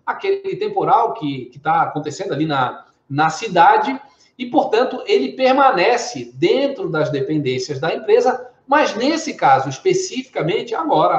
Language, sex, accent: Portuguese, male, Brazilian